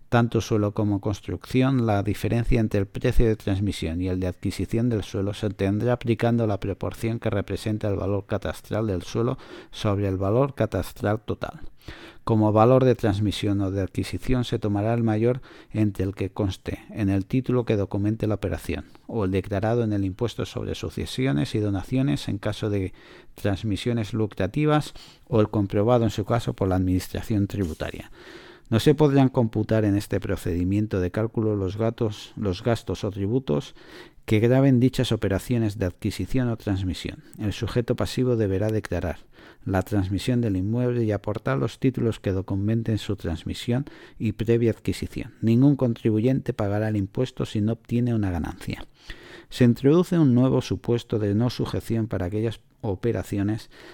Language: Spanish